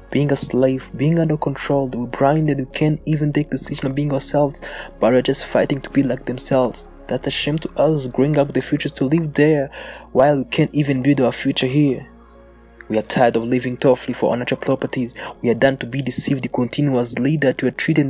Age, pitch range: 20-39, 120-140 Hz